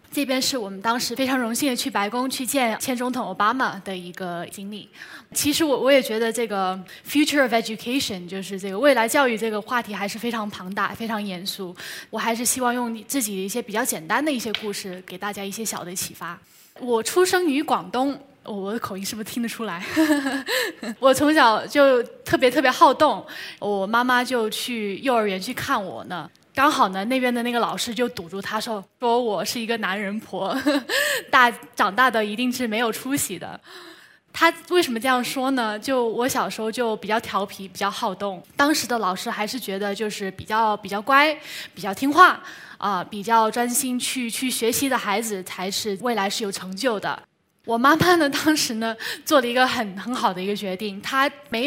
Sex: female